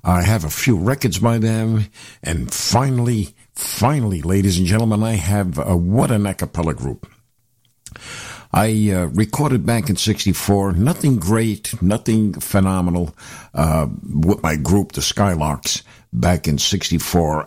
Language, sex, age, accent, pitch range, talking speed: English, male, 60-79, American, 80-110 Hz, 135 wpm